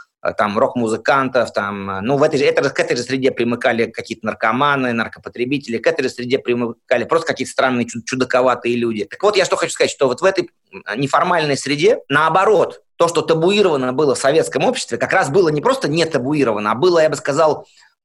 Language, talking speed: Russian, 195 wpm